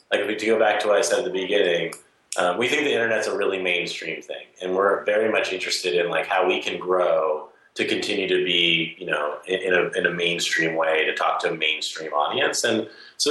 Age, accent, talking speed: 30-49, American, 235 wpm